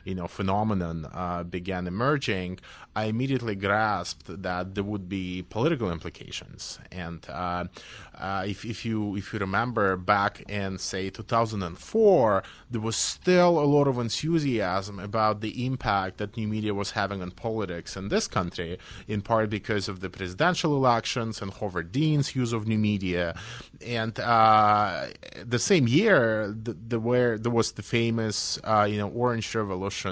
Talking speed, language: 155 wpm, English